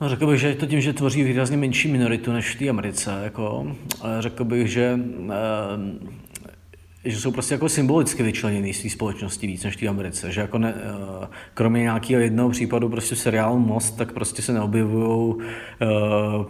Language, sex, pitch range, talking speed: Czech, male, 110-125 Hz, 175 wpm